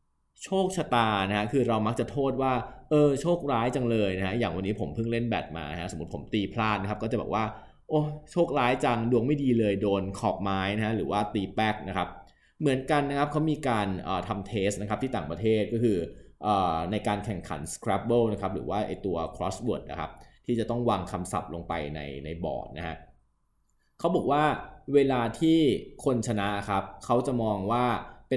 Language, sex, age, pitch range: Thai, male, 20-39, 100-125 Hz